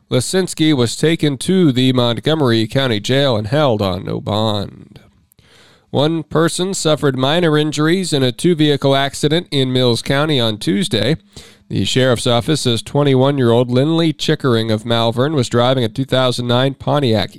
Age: 40-59